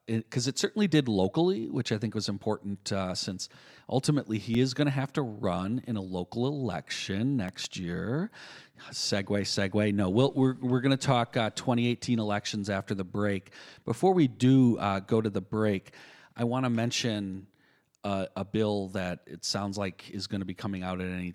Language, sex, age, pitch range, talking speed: English, male, 40-59, 95-120 Hz, 195 wpm